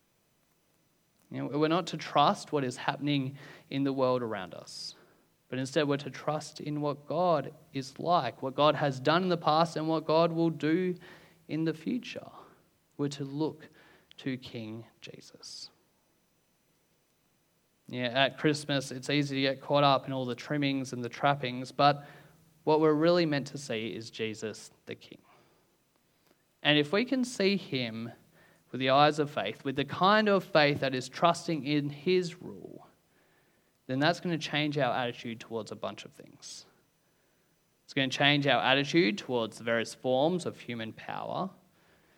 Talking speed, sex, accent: 170 wpm, male, Australian